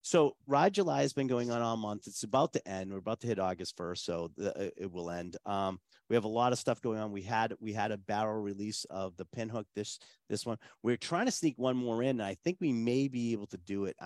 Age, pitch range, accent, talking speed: 40-59, 90-120 Hz, American, 270 wpm